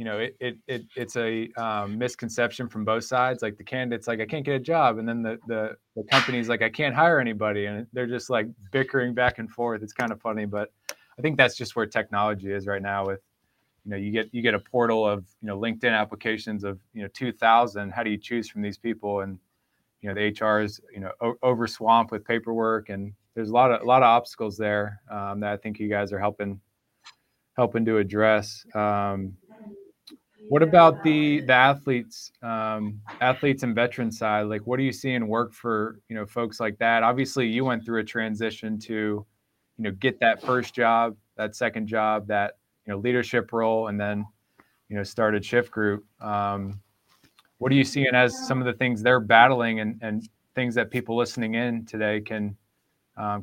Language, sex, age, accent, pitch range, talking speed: English, male, 20-39, American, 105-120 Hz, 210 wpm